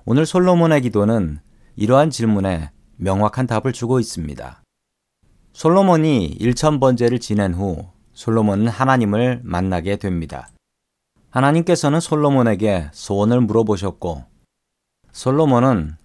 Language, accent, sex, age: Korean, native, male, 40-59